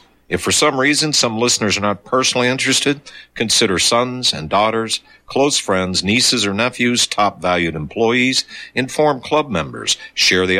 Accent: American